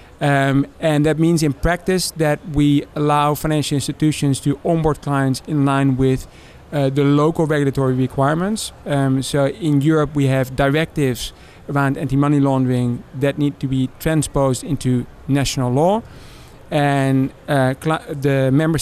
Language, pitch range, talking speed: English, 130-145 Hz, 140 wpm